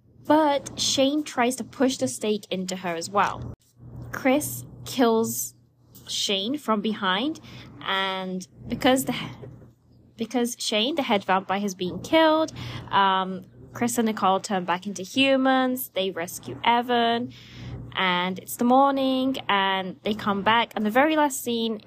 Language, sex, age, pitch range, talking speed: English, female, 10-29, 185-245 Hz, 140 wpm